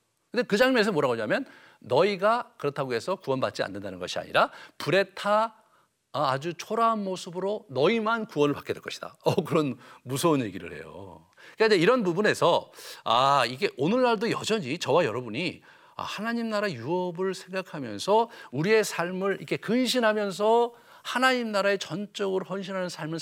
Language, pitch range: Korean, 160-225 Hz